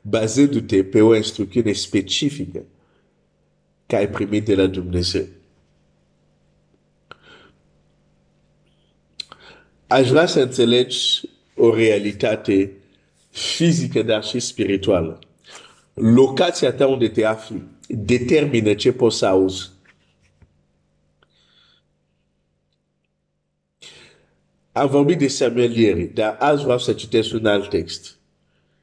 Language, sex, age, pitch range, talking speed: Romanian, male, 50-69, 95-135 Hz, 75 wpm